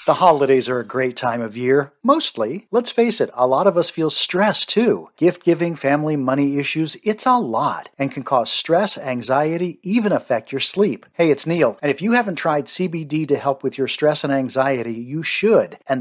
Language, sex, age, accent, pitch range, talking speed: English, male, 50-69, American, 135-175 Hz, 205 wpm